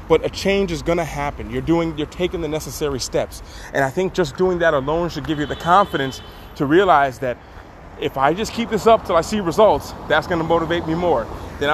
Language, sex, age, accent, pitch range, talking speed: English, male, 30-49, American, 130-165 Hz, 225 wpm